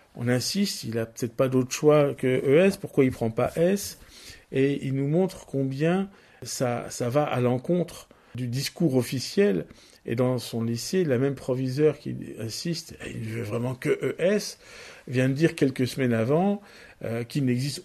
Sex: male